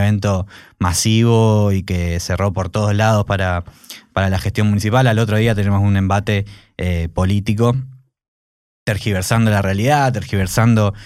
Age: 20-39